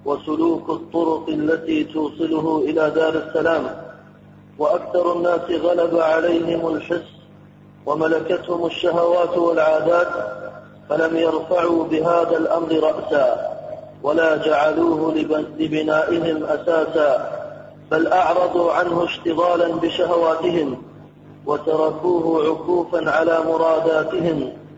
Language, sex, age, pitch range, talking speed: Arabic, male, 40-59, 160-175 Hz, 80 wpm